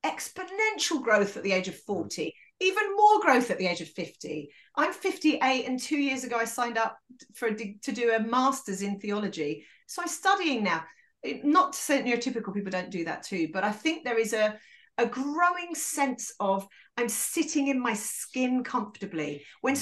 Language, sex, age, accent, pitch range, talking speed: English, female, 40-59, British, 215-330 Hz, 180 wpm